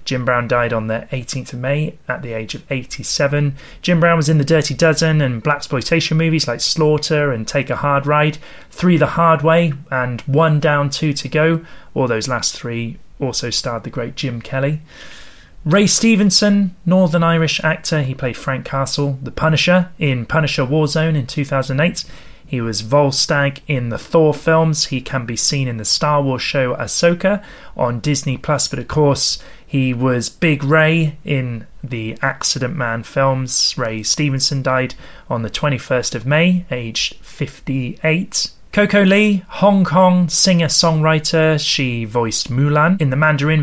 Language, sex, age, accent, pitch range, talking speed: English, male, 30-49, British, 130-160 Hz, 165 wpm